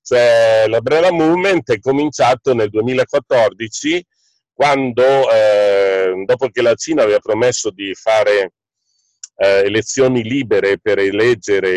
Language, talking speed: Italian, 115 wpm